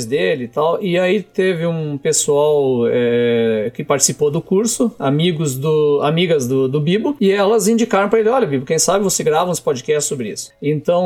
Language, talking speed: Portuguese, 190 wpm